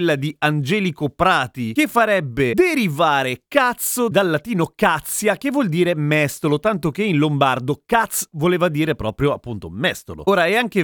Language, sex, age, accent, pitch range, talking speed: Italian, male, 30-49, native, 130-175 Hz, 150 wpm